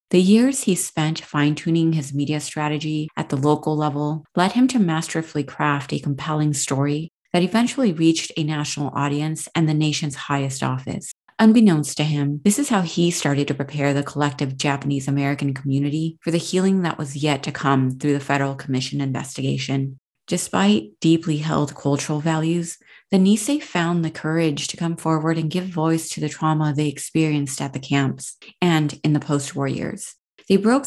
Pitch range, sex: 145-170 Hz, female